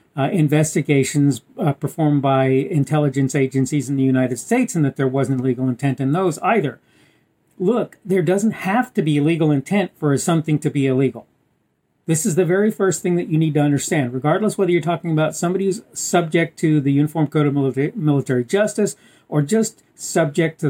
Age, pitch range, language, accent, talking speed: 50-69, 140-185 Hz, English, American, 185 wpm